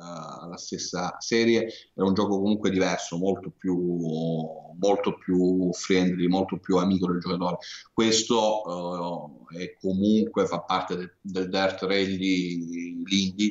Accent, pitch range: native, 90-100 Hz